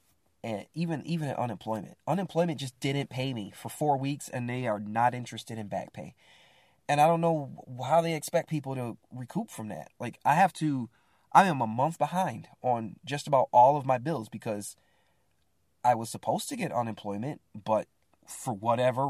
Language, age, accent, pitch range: English, 20-39, American, 110-145 Hz